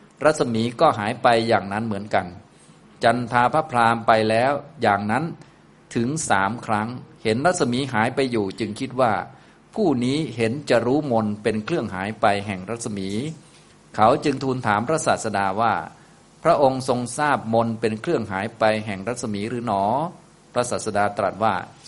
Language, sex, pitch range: Thai, male, 105-125 Hz